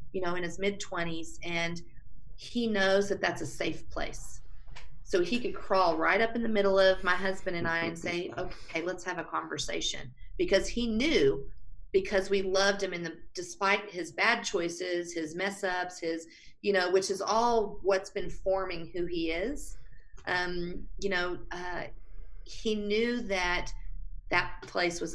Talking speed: 175 wpm